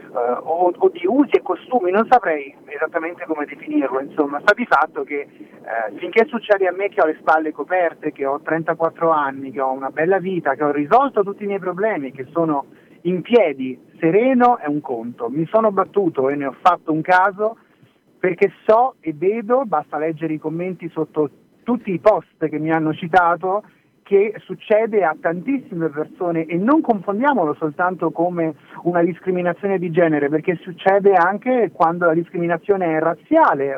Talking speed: 175 wpm